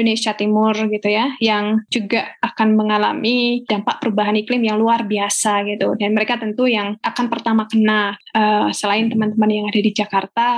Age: 10-29